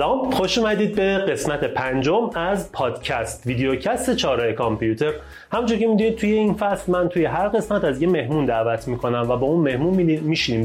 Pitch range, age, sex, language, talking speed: 135-190 Hz, 30-49, male, Persian, 165 wpm